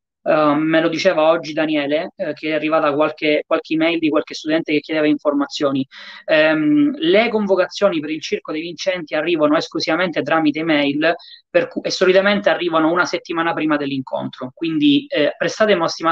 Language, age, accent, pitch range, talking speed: Italian, 20-39, native, 155-210 Hz, 165 wpm